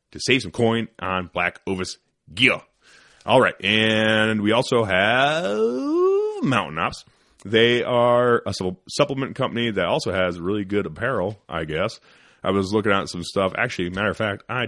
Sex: male